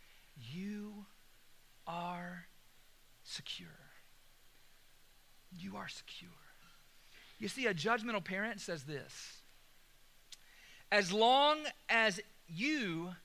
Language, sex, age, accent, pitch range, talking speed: English, male, 40-59, American, 170-250 Hz, 75 wpm